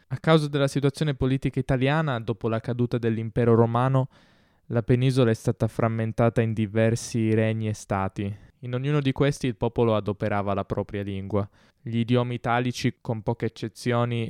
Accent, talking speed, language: native, 155 wpm, Italian